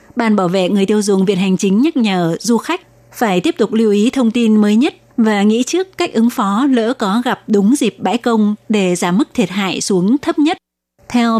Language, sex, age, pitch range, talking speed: Vietnamese, female, 20-39, 200-240 Hz, 230 wpm